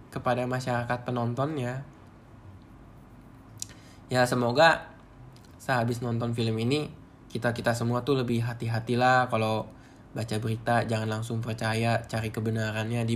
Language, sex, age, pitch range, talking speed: Indonesian, male, 10-29, 115-150 Hz, 110 wpm